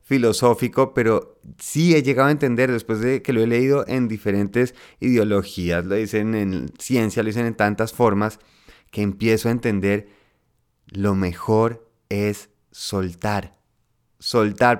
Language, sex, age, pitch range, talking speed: Spanish, male, 30-49, 105-125 Hz, 140 wpm